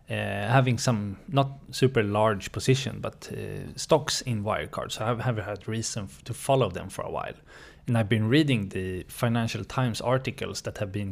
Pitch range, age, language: 105-130 Hz, 20-39, Swedish